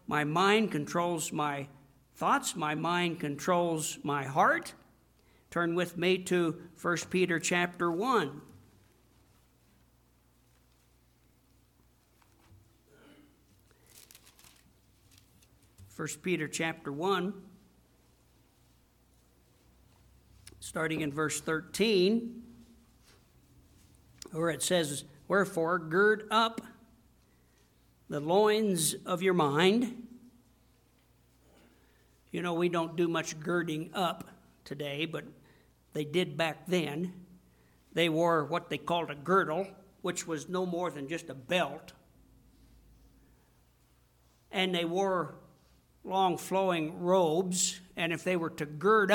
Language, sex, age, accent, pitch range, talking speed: English, male, 60-79, American, 150-185 Hz, 95 wpm